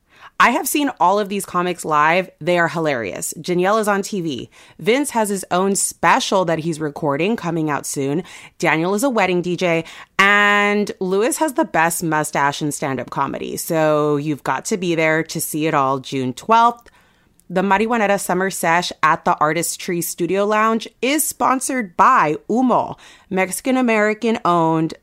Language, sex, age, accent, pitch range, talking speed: English, female, 30-49, American, 160-210 Hz, 160 wpm